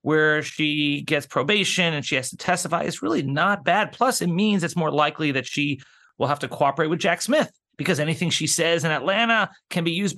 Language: English